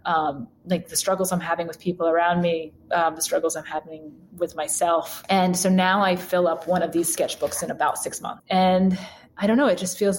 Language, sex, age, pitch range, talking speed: English, female, 20-39, 165-185 Hz, 225 wpm